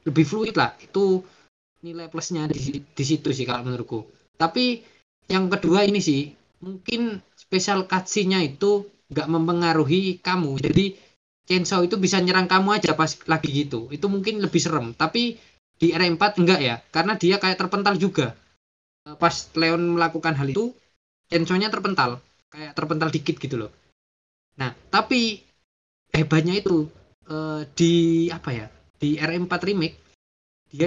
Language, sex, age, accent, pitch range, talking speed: Indonesian, male, 20-39, native, 150-190 Hz, 140 wpm